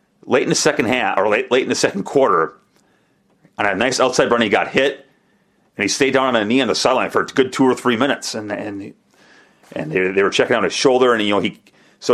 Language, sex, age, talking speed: English, male, 40-59, 255 wpm